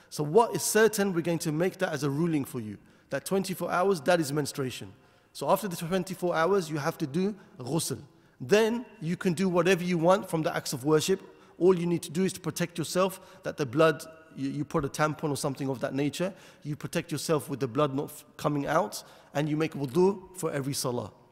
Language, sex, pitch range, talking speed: English, male, 145-180 Hz, 225 wpm